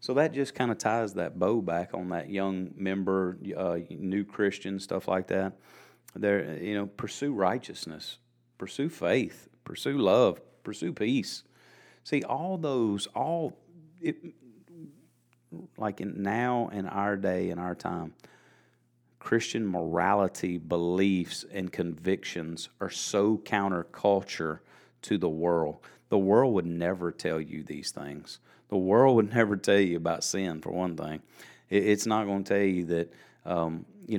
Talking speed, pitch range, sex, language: 145 wpm, 85-100 Hz, male, English